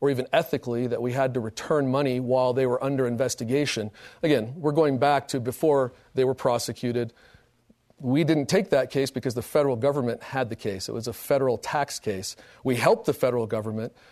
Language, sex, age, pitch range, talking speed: English, male, 40-59, 120-145 Hz, 195 wpm